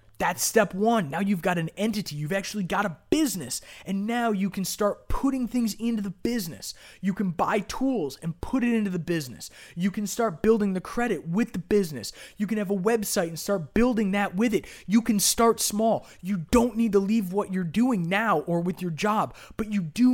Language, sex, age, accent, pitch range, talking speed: English, male, 20-39, American, 175-220 Hz, 220 wpm